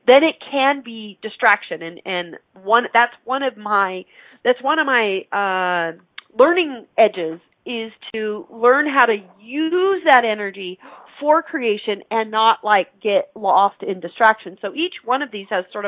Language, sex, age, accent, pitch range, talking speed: English, female, 40-59, American, 185-250 Hz, 165 wpm